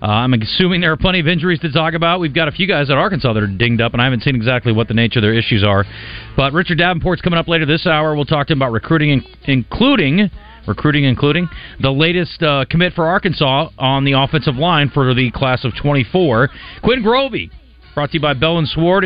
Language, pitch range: English, 120-170 Hz